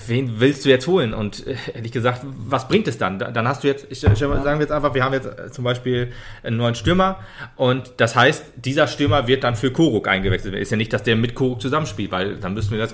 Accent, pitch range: German, 110-140 Hz